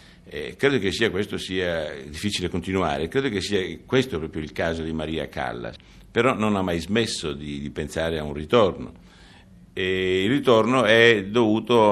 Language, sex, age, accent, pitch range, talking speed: Italian, male, 60-79, native, 75-95 Hz, 170 wpm